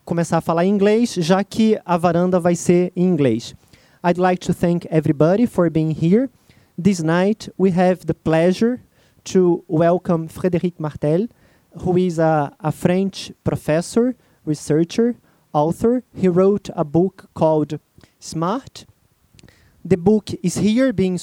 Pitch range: 165-200 Hz